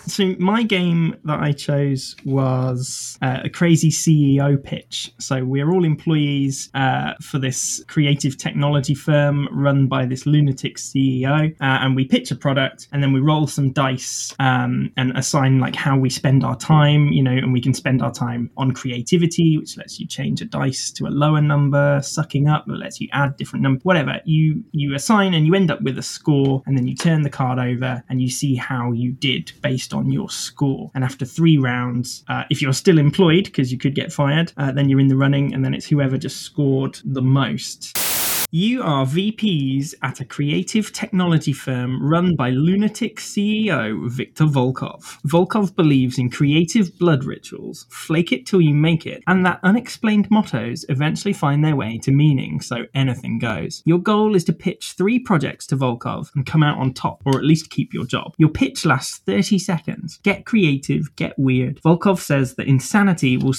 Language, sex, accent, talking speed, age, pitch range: English, male, British, 190 wpm, 10-29, 130-165 Hz